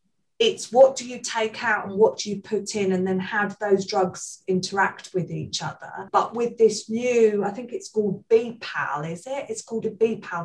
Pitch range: 175-210 Hz